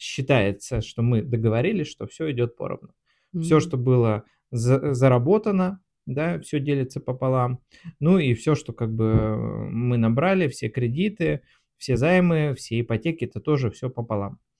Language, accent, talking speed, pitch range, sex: Russian, native, 140 wpm, 115-140 Hz, male